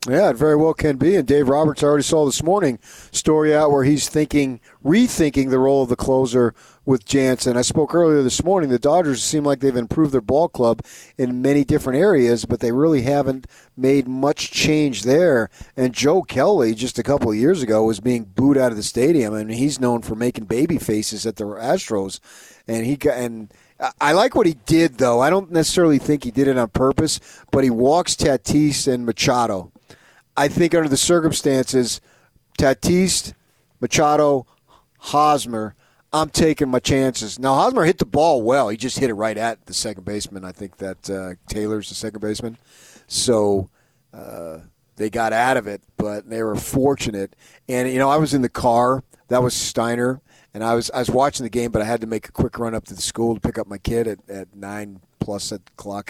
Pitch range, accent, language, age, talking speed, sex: 110-145 Hz, American, English, 40-59, 205 wpm, male